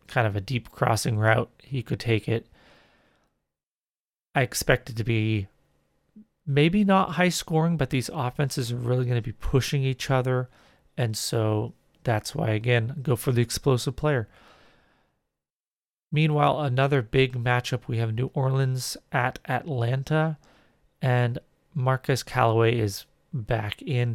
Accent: American